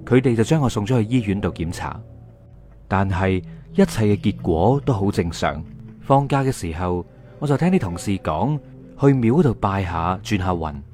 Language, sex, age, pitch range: Chinese, male, 30-49, 95-135 Hz